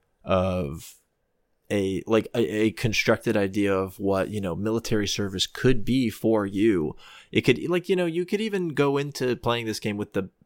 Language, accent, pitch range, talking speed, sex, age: English, American, 95-110 Hz, 185 wpm, male, 20-39